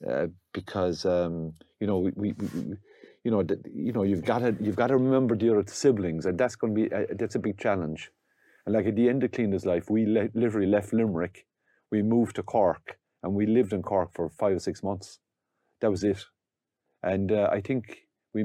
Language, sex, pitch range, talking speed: English, male, 95-115 Hz, 180 wpm